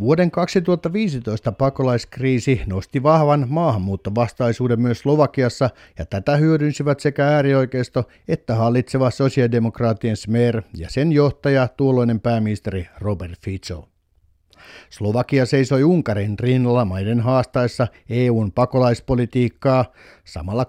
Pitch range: 100-140 Hz